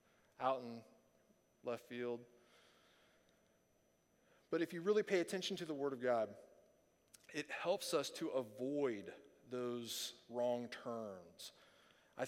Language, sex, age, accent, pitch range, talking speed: English, male, 40-59, American, 130-195 Hz, 115 wpm